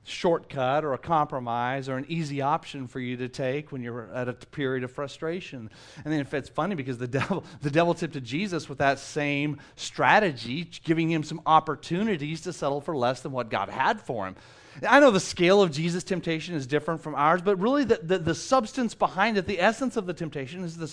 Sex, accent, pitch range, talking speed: male, American, 145-215 Hz, 215 wpm